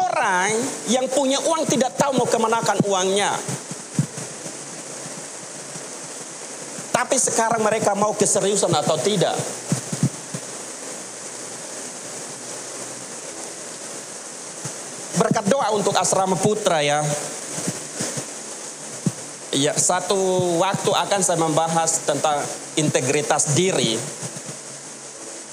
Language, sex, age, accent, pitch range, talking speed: Indonesian, male, 40-59, native, 130-200 Hz, 70 wpm